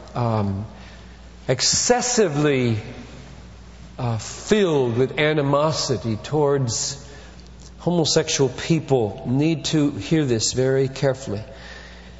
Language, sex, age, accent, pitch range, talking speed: English, male, 40-59, American, 110-145 Hz, 75 wpm